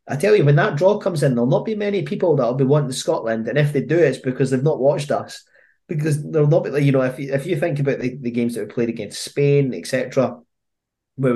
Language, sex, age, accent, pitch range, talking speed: English, male, 20-39, British, 115-140 Hz, 255 wpm